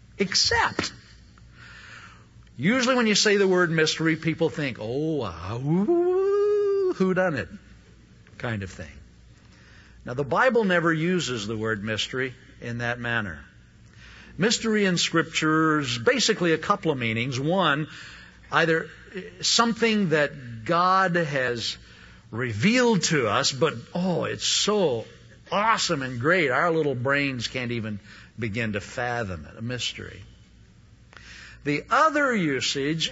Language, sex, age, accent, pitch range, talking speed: English, male, 60-79, American, 115-180 Hz, 125 wpm